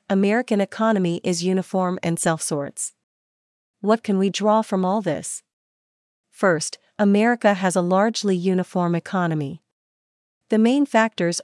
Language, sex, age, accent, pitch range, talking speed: English, female, 40-59, American, 170-205 Hz, 120 wpm